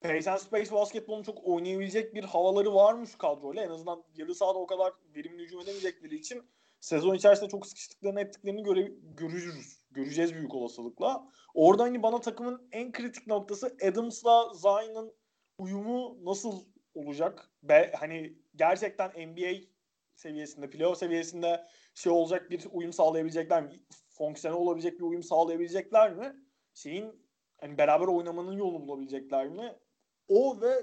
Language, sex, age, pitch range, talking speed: Turkish, male, 30-49, 165-215 Hz, 140 wpm